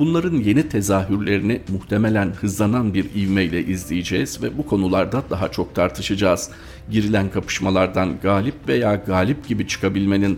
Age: 40-59